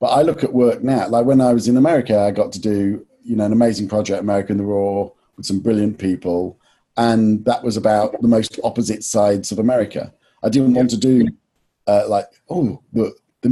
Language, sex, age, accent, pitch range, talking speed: English, male, 40-59, British, 100-130 Hz, 220 wpm